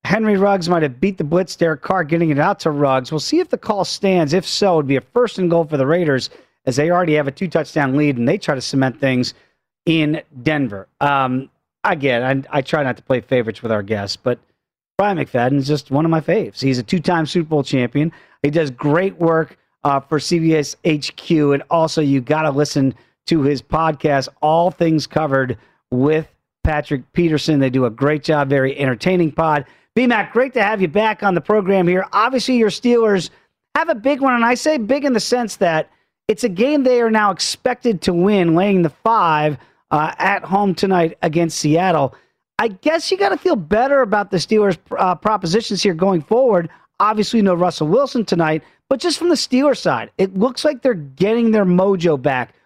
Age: 40-59